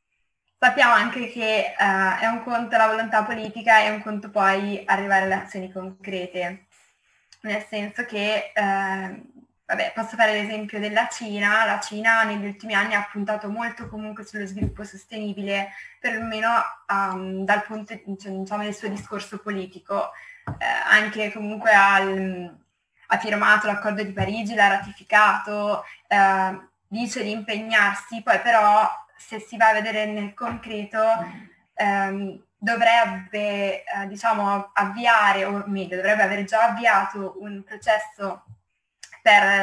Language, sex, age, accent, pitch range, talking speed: Italian, female, 20-39, native, 195-220 Hz, 130 wpm